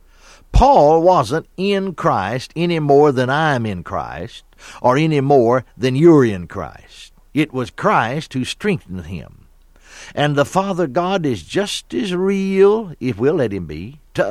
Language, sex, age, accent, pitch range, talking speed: English, male, 60-79, American, 115-180 Hz, 155 wpm